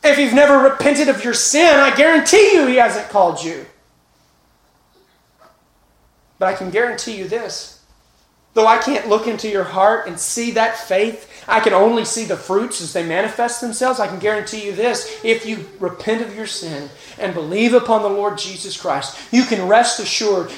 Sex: male